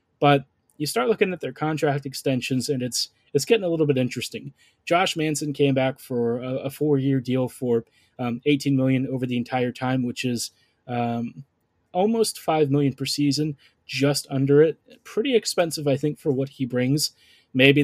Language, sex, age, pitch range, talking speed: English, male, 20-39, 130-145 Hz, 180 wpm